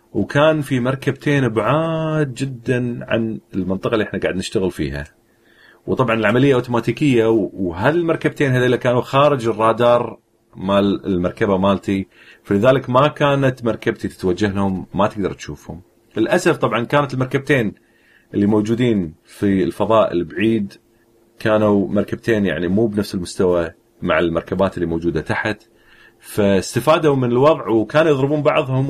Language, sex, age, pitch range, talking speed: Arabic, male, 40-59, 100-130 Hz, 120 wpm